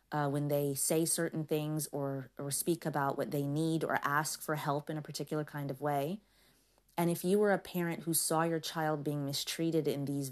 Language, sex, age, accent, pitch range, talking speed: English, female, 30-49, American, 145-165 Hz, 215 wpm